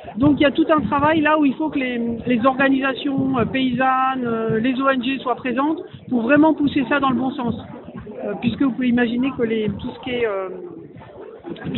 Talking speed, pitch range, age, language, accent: 215 wpm, 230-290 Hz, 50-69, French, French